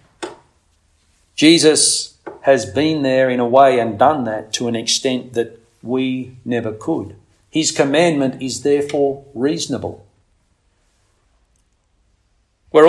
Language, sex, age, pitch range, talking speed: English, male, 50-69, 100-130 Hz, 105 wpm